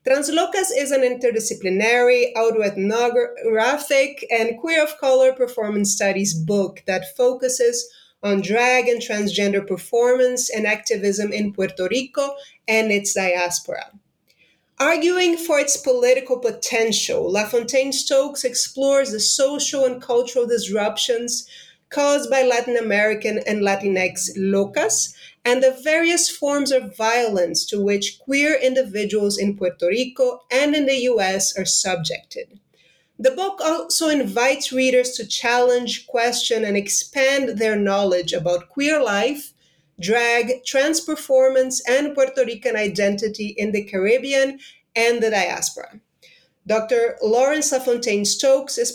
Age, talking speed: 30-49, 120 wpm